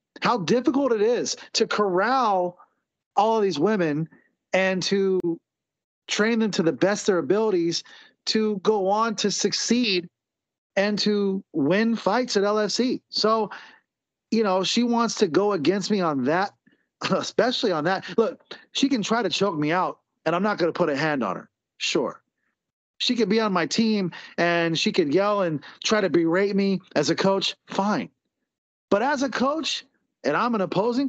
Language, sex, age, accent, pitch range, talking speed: English, male, 40-59, American, 170-220 Hz, 175 wpm